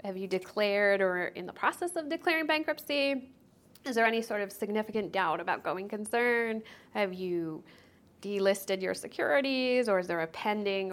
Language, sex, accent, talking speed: English, female, American, 165 wpm